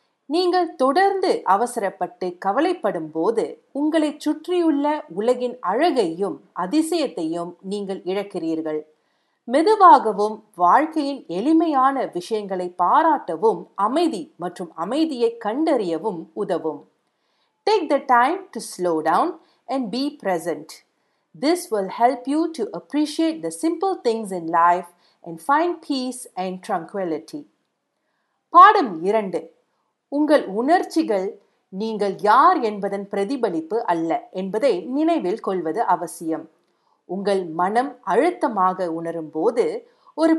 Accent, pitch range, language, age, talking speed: native, 180-300 Hz, Tamil, 50-69, 80 wpm